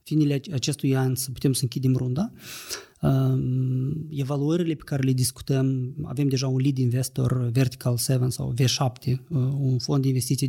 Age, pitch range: 30-49, 125-150 Hz